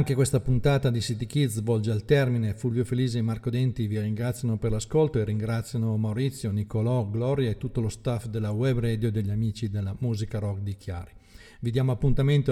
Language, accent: Italian, native